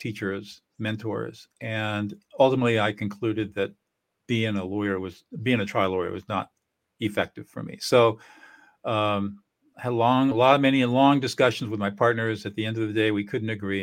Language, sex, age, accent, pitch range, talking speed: English, male, 50-69, American, 100-120 Hz, 190 wpm